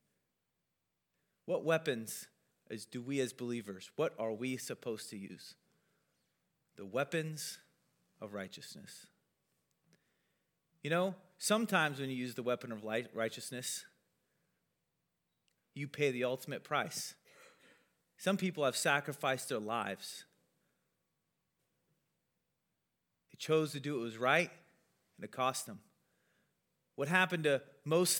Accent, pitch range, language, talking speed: American, 125-175 Hz, English, 110 wpm